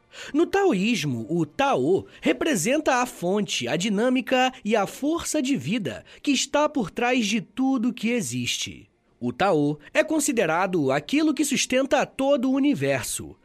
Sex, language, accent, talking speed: male, Portuguese, Brazilian, 145 wpm